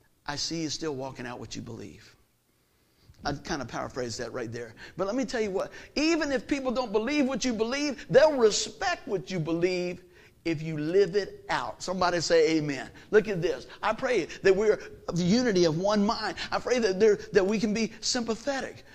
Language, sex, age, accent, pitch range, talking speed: English, male, 50-69, American, 170-240 Hz, 210 wpm